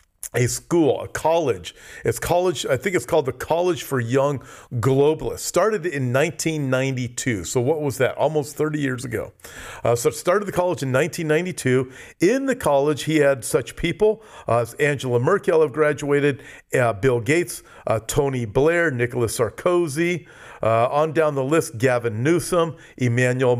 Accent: American